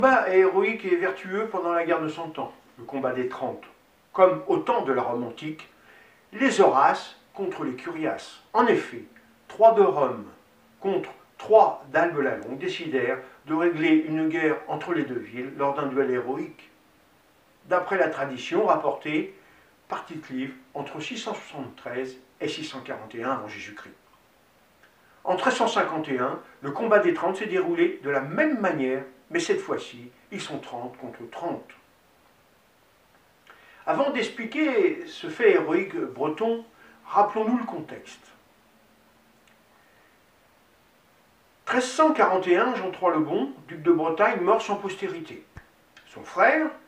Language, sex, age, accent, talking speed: French, male, 50-69, French, 130 wpm